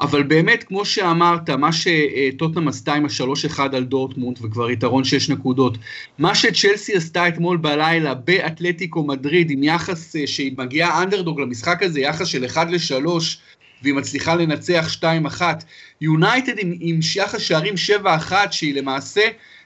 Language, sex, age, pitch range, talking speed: Hebrew, male, 30-49, 140-185 Hz, 145 wpm